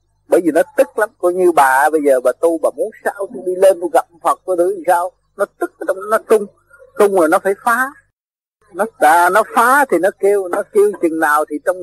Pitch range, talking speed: 165-235 Hz, 235 wpm